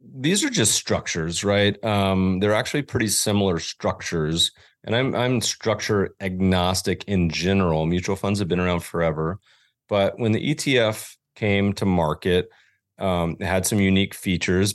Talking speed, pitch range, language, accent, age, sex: 150 wpm, 85-105 Hz, English, American, 30-49, male